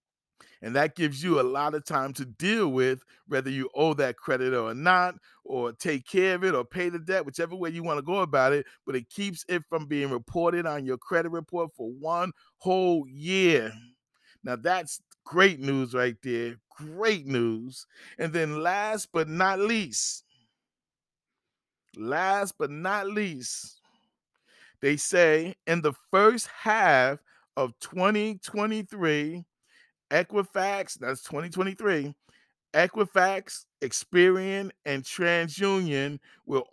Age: 40-59